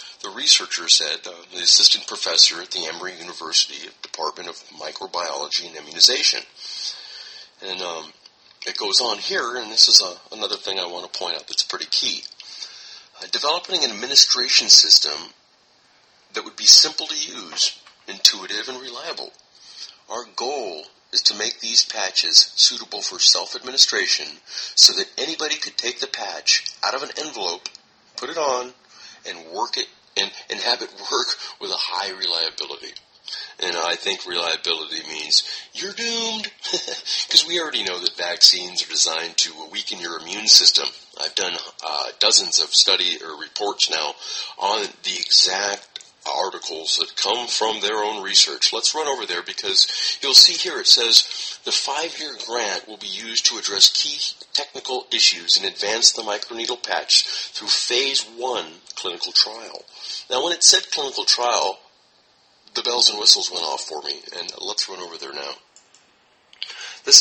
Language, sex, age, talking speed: English, male, 40-59, 155 wpm